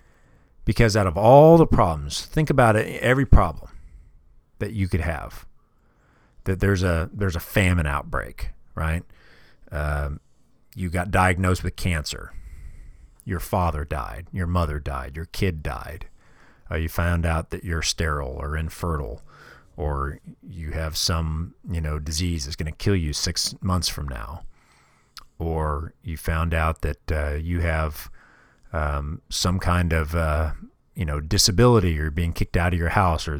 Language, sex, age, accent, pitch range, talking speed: English, male, 40-59, American, 75-95 Hz, 155 wpm